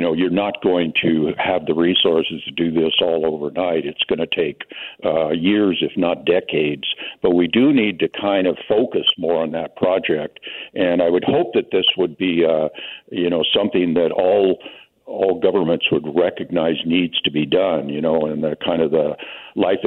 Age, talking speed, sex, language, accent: 60-79, 195 wpm, male, English, American